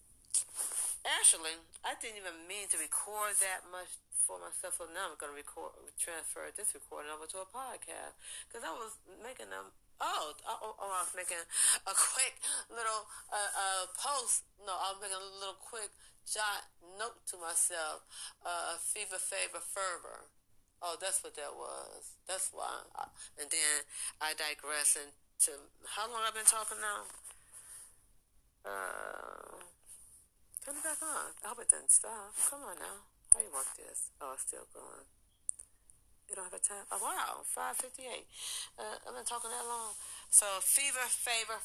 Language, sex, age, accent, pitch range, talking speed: English, female, 40-59, American, 160-220 Hz, 165 wpm